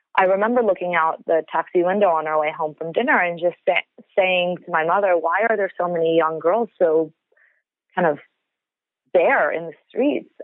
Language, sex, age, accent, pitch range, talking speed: English, female, 30-49, American, 160-195 Hz, 195 wpm